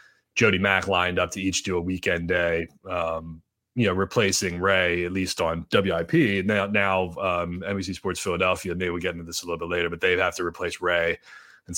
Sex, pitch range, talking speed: male, 90-110 Hz, 210 wpm